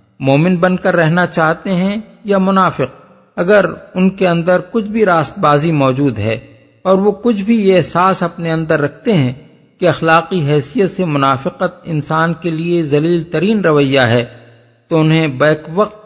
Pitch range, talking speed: 145-190 Hz, 165 wpm